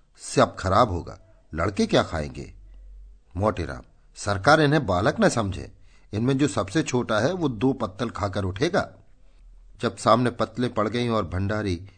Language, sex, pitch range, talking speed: Hindi, male, 90-120 Hz, 145 wpm